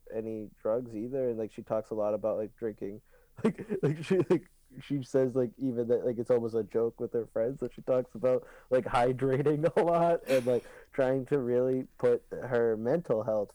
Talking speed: 205 wpm